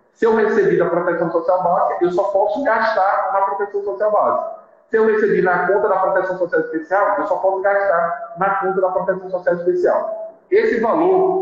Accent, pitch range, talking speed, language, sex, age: Brazilian, 170-210 Hz, 190 wpm, Portuguese, male, 40-59